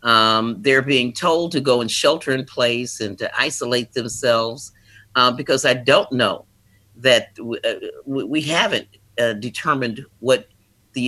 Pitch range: 105-130 Hz